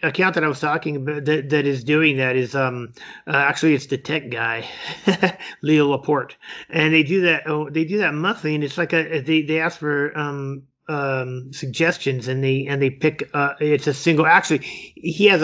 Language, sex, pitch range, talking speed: English, male, 135-160 Hz, 200 wpm